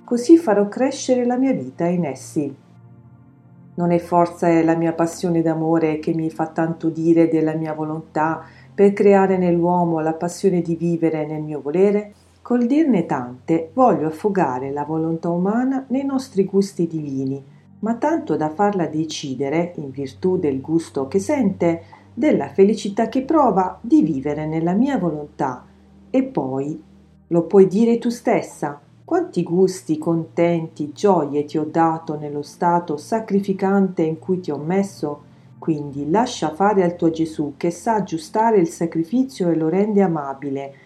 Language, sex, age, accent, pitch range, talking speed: Italian, female, 40-59, native, 155-205 Hz, 150 wpm